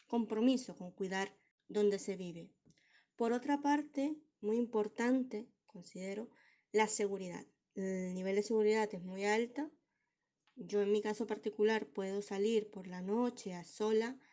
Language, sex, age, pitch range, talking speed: Spanish, female, 20-39, 205-240 Hz, 140 wpm